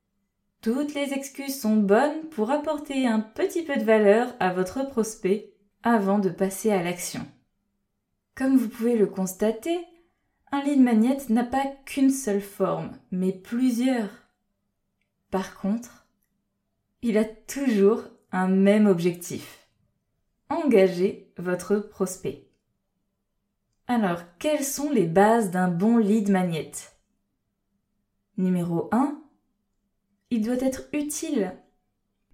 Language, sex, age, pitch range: French, female, 20-39, 195-245 Hz